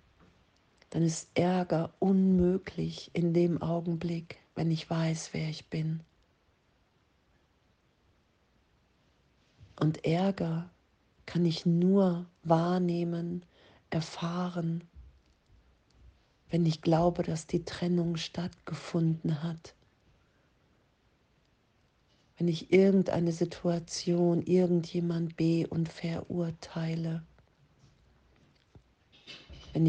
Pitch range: 160-175 Hz